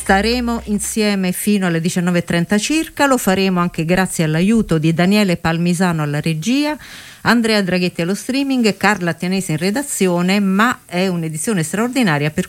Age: 50-69